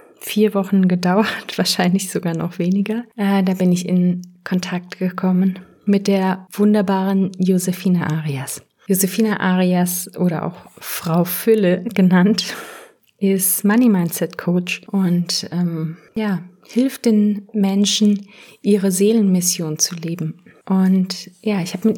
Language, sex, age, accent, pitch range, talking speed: German, female, 30-49, German, 180-210 Hz, 120 wpm